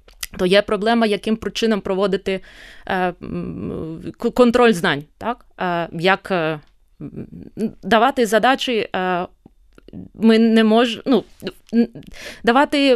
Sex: female